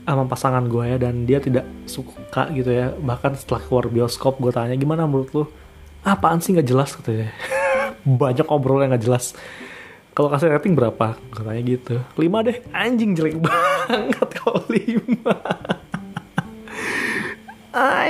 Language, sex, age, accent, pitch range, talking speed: Indonesian, male, 20-39, native, 125-160 Hz, 160 wpm